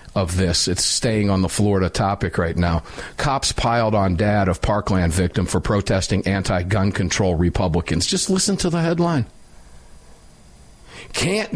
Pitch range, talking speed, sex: 105-160 Hz, 145 wpm, male